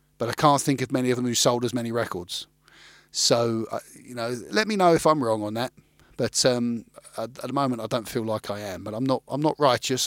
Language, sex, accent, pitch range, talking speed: English, male, British, 115-155 Hz, 255 wpm